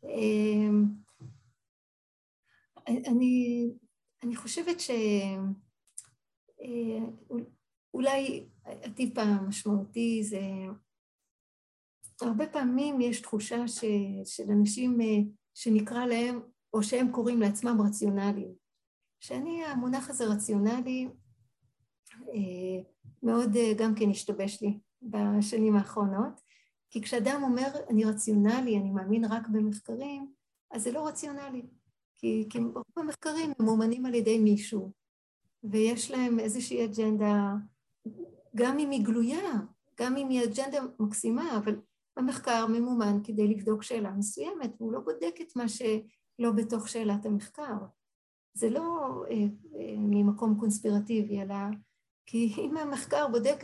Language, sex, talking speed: Hebrew, female, 110 wpm